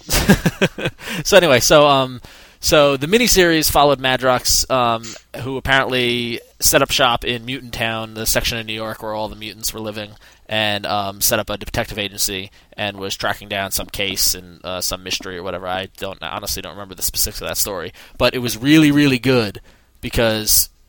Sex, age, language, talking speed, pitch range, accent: male, 20-39, English, 190 wpm, 105-125 Hz, American